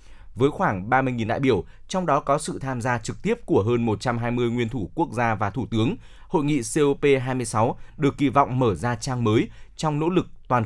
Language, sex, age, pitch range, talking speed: Vietnamese, male, 20-39, 115-145 Hz, 210 wpm